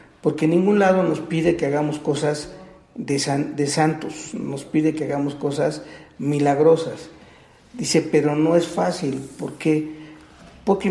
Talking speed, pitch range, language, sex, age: 145 wpm, 140-160 Hz, Spanish, male, 50-69